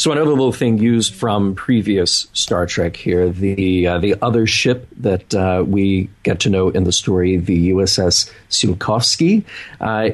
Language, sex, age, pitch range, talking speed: English, male, 40-59, 90-115 Hz, 165 wpm